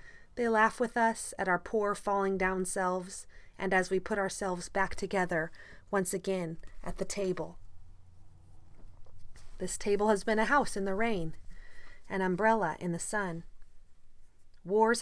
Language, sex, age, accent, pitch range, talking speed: English, female, 30-49, American, 150-205 Hz, 145 wpm